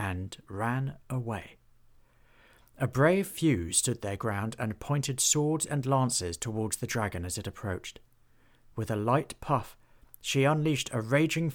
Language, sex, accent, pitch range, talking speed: English, male, British, 110-140 Hz, 145 wpm